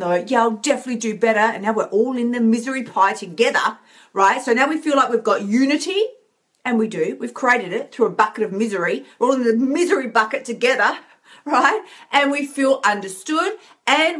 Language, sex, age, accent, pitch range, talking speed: English, female, 40-59, Australian, 215-280 Hz, 205 wpm